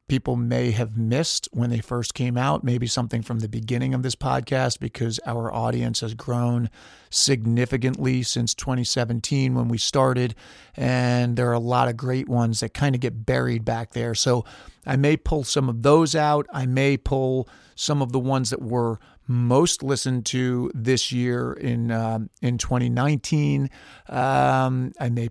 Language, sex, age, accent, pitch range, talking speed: English, male, 40-59, American, 120-135 Hz, 170 wpm